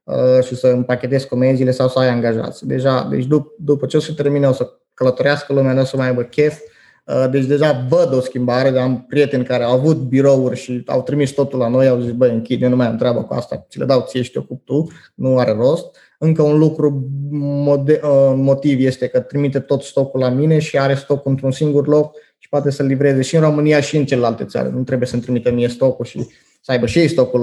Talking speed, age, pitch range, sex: 225 wpm, 20-39, 125-150 Hz, male